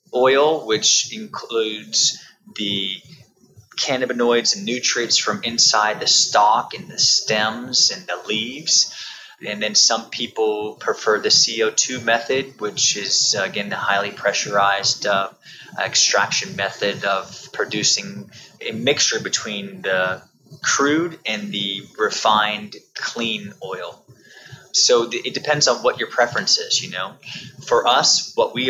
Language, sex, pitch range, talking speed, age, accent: English, male, 105-165 Hz, 125 wpm, 20-39, American